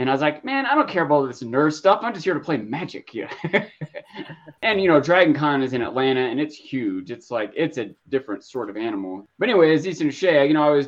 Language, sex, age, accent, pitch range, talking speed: English, male, 20-39, American, 125-175 Hz, 265 wpm